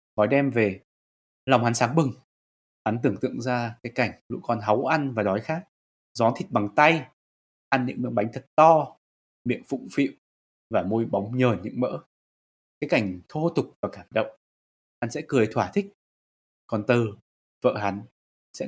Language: Vietnamese